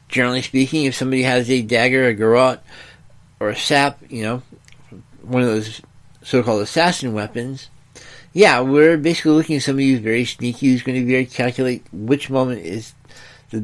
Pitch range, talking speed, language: 110-135 Hz, 175 wpm, English